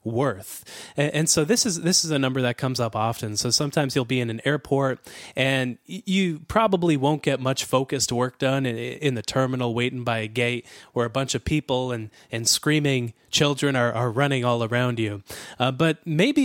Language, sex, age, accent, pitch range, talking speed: English, male, 20-39, American, 120-150 Hz, 195 wpm